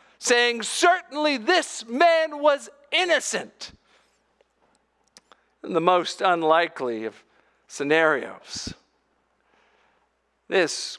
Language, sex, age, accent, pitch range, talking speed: English, male, 50-69, American, 150-240 Hz, 70 wpm